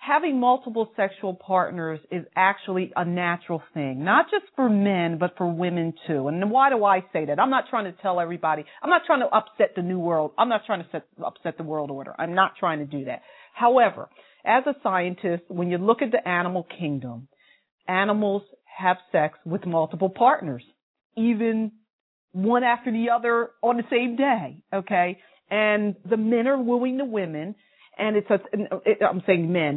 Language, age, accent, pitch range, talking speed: English, 40-59, American, 180-235 Hz, 180 wpm